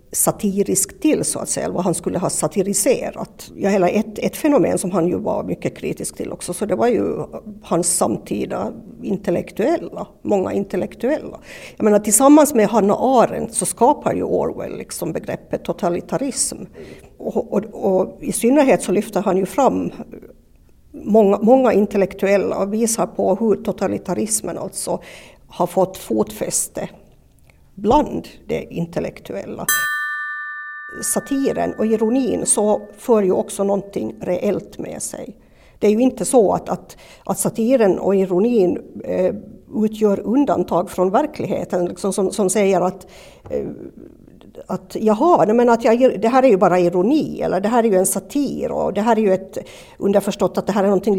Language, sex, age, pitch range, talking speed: Swedish, female, 50-69, 190-235 Hz, 150 wpm